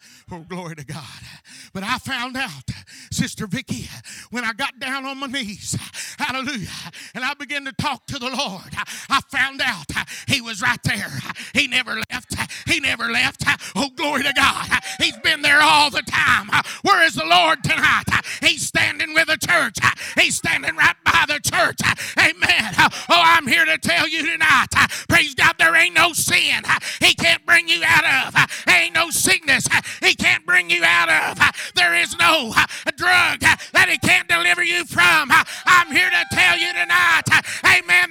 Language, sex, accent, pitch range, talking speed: English, male, American, 260-345 Hz, 175 wpm